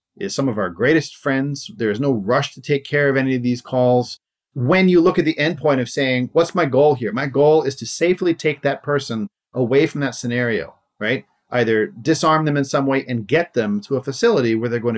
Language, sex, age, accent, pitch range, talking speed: English, male, 40-59, American, 120-160 Hz, 235 wpm